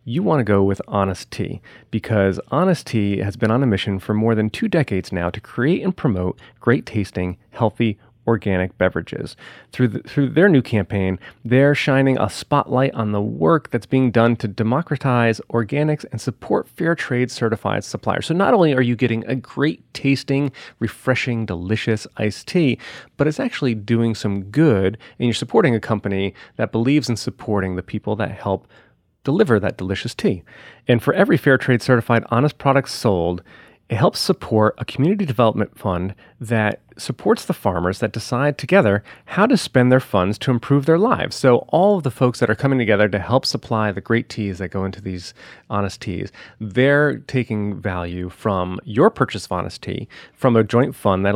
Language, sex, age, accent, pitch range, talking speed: English, male, 30-49, American, 100-135 Hz, 180 wpm